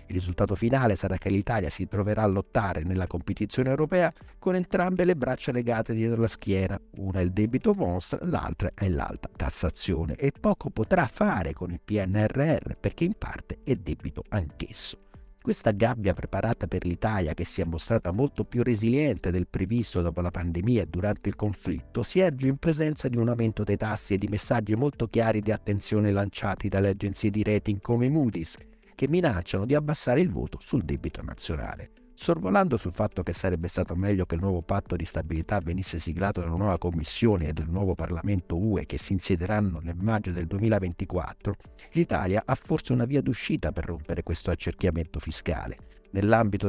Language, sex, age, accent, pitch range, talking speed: Italian, male, 50-69, native, 90-115 Hz, 175 wpm